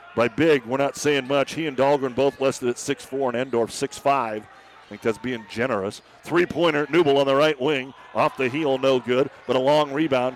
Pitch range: 120-145 Hz